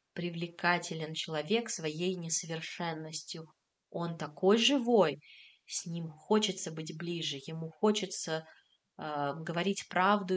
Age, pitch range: 20-39, 170-205 Hz